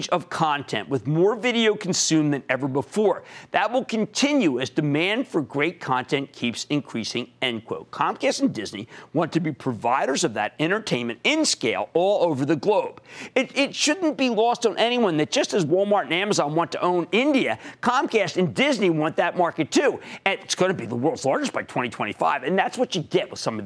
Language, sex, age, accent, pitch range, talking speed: English, male, 50-69, American, 155-245 Hz, 200 wpm